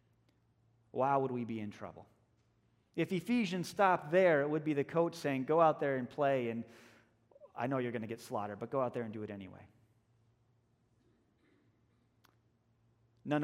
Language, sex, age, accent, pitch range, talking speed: English, male, 30-49, American, 115-165 Hz, 170 wpm